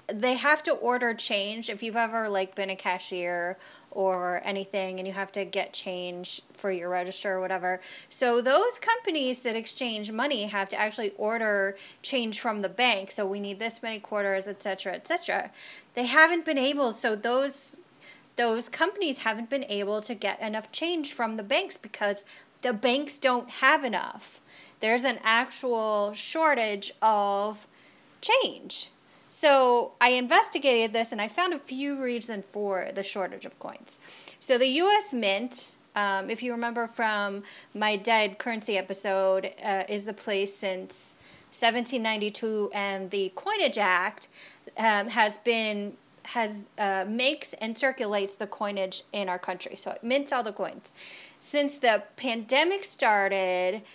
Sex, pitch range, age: female, 195-250 Hz, 20-39